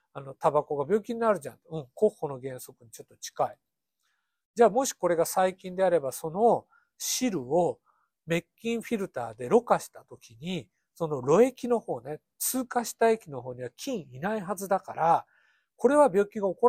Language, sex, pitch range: Japanese, male, 145-230 Hz